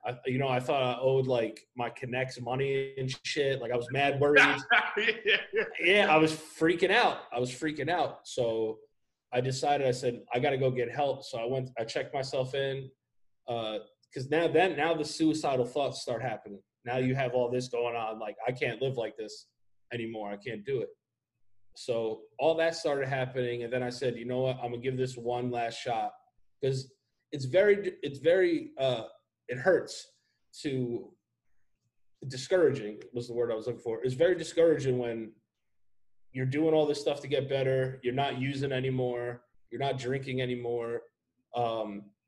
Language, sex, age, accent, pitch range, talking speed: English, male, 20-39, American, 120-145 Hz, 185 wpm